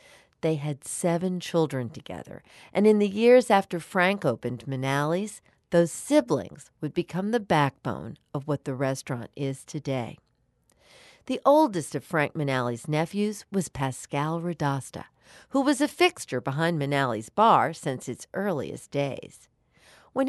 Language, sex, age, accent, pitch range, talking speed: English, female, 50-69, American, 135-185 Hz, 135 wpm